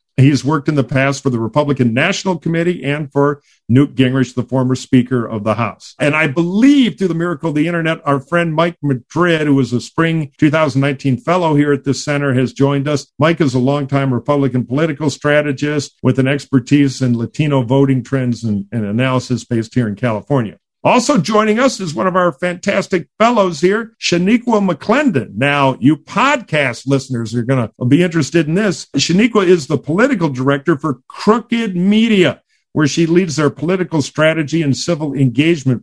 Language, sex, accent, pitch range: English, male, American, 125-165 Hz